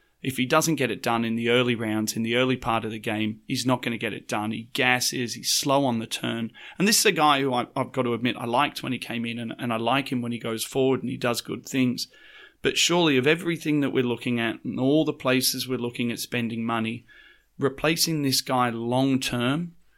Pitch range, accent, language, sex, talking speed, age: 115-130 Hz, Australian, English, male, 245 wpm, 30-49